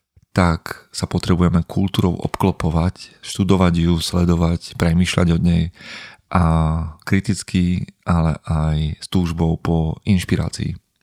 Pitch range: 85-95 Hz